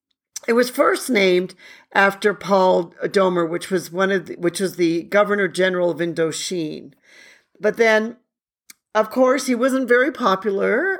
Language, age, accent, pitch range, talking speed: English, 50-69, American, 170-215 Hz, 145 wpm